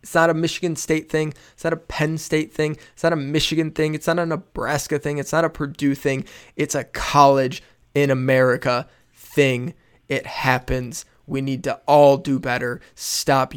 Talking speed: 185 wpm